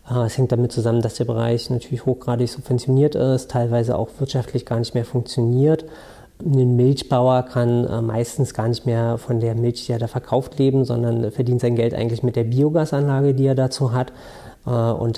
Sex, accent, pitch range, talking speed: male, German, 120-130 Hz, 180 wpm